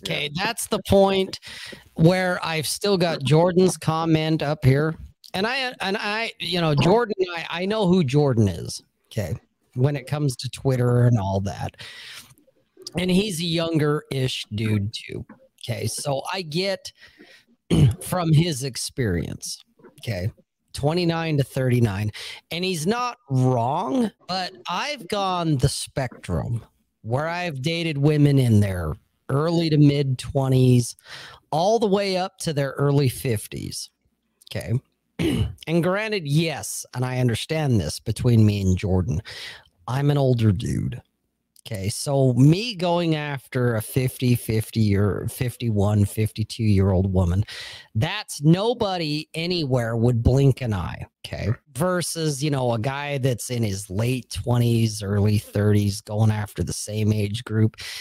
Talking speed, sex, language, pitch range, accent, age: 140 wpm, male, English, 115-170 Hz, American, 40-59